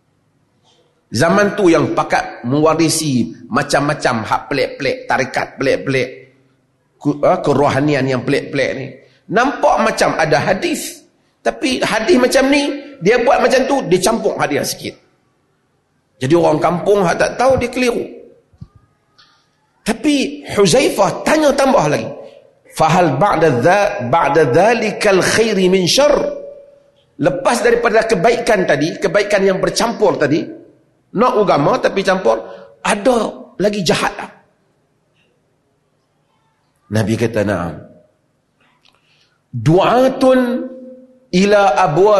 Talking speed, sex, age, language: 105 wpm, male, 40-59, Malay